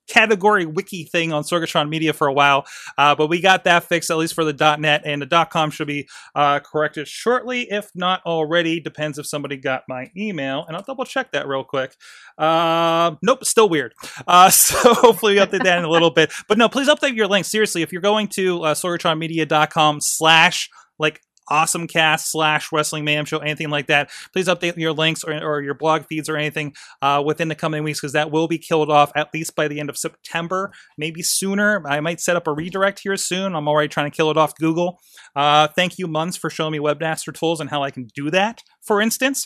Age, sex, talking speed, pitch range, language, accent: 30-49, male, 220 wpm, 155-190 Hz, English, American